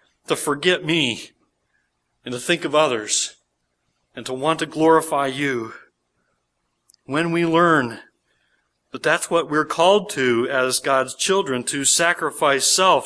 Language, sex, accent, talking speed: English, male, American, 135 wpm